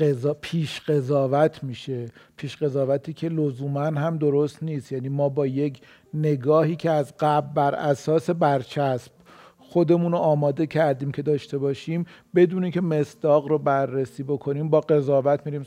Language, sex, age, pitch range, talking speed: Persian, male, 50-69, 140-175 Hz, 145 wpm